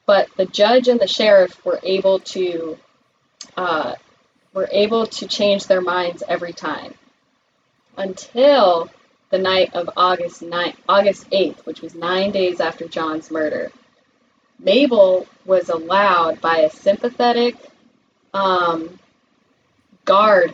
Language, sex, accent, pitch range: English, female, American, 170-245 Hz